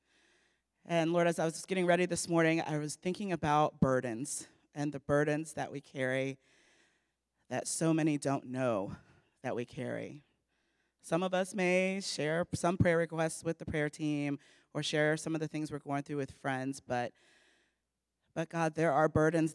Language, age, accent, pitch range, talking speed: English, 30-49, American, 135-160 Hz, 175 wpm